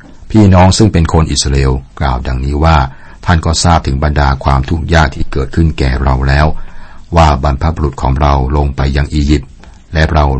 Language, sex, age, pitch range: Thai, male, 60-79, 70-85 Hz